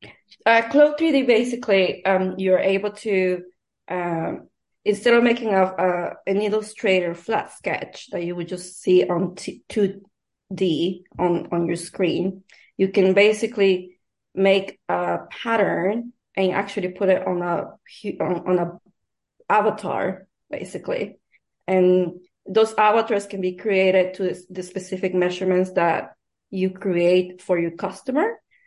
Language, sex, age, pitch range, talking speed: English, female, 20-39, 180-205 Hz, 130 wpm